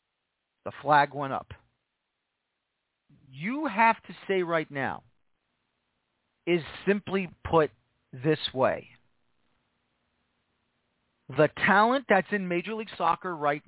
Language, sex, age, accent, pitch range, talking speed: English, male, 40-59, American, 145-205 Hz, 100 wpm